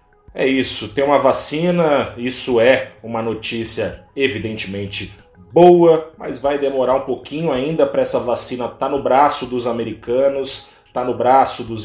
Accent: Brazilian